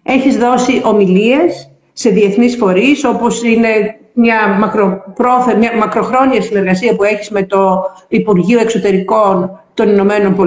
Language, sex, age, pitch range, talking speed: Greek, female, 50-69, 200-240 Hz, 105 wpm